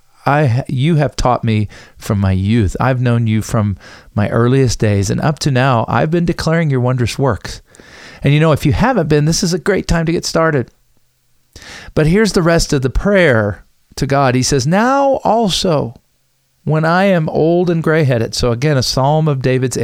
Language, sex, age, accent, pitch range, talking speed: English, male, 40-59, American, 110-150 Hz, 195 wpm